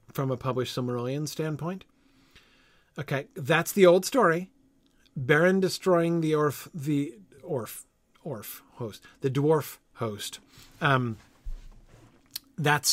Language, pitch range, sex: English, 120-150 Hz, male